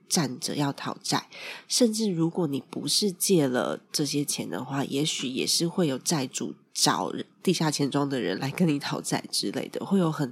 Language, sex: Chinese, female